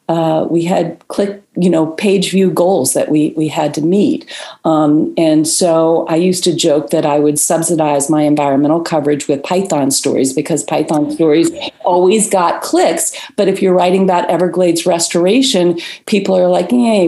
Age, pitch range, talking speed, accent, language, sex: 40-59, 170-245 Hz, 170 wpm, American, English, female